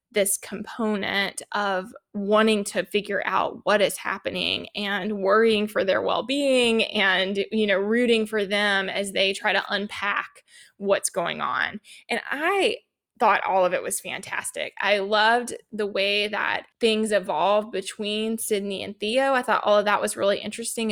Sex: female